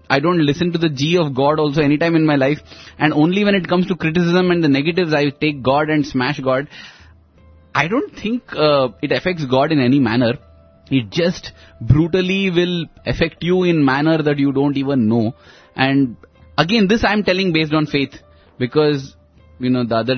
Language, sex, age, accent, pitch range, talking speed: English, male, 20-39, Indian, 125-165 Hz, 200 wpm